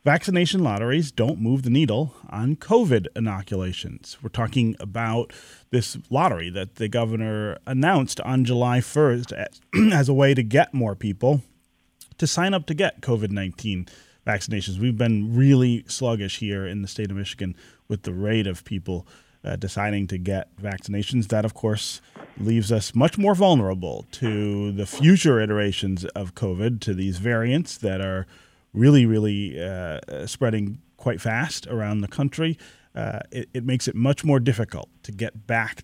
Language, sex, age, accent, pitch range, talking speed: English, male, 30-49, American, 100-130 Hz, 155 wpm